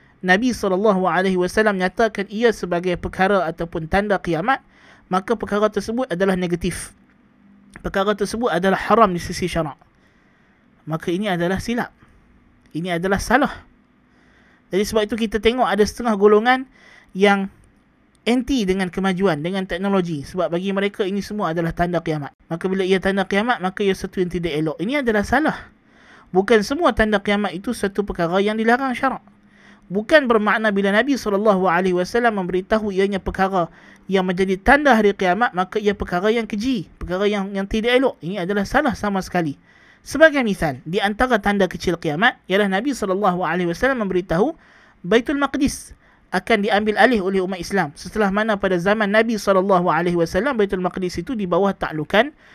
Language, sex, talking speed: Malay, male, 150 wpm